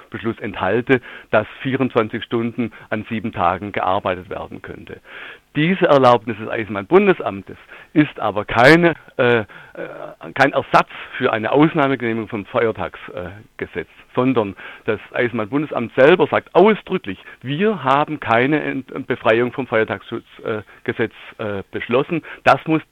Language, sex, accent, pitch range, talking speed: German, male, German, 110-155 Hz, 120 wpm